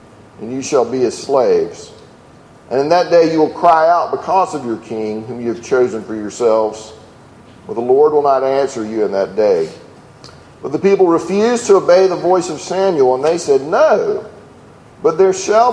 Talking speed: 195 wpm